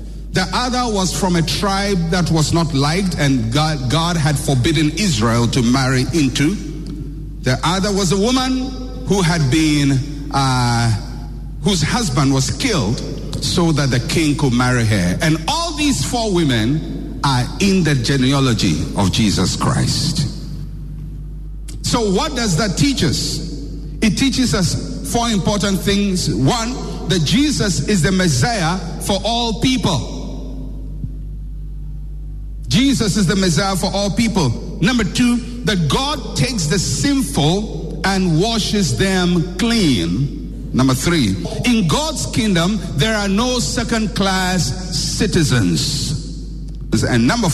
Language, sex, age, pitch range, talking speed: English, male, 50-69, 135-195 Hz, 130 wpm